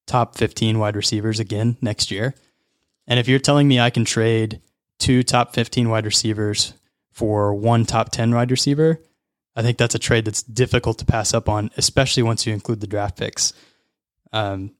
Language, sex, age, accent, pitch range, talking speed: English, male, 20-39, American, 110-130 Hz, 185 wpm